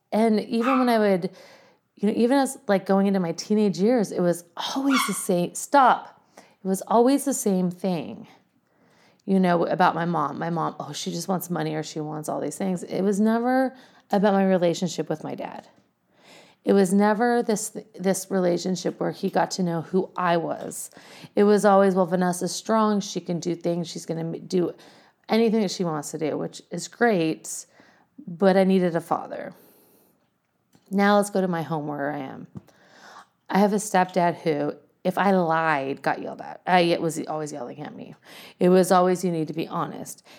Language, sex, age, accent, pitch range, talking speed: English, female, 30-49, American, 175-225 Hz, 195 wpm